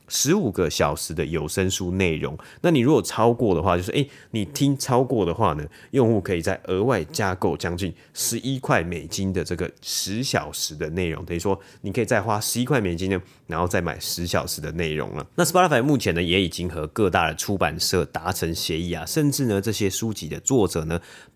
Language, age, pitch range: Chinese, 30-49, 85-115 Hz